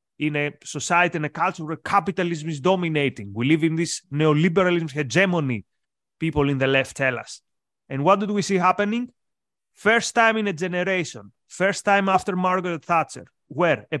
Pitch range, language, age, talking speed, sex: 150-195 Hz, English, 30-49, 170 wpm, male